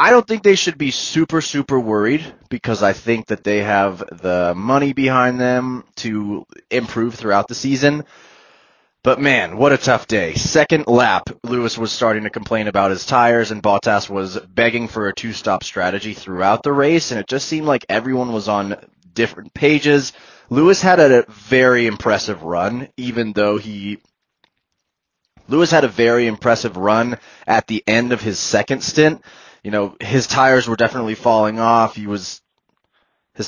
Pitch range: 105-130 Hz